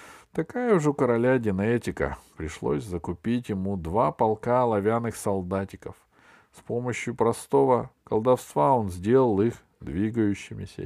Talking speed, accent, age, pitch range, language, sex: 110 wpm, native, 50-69, 90-125 Hz, Russian, male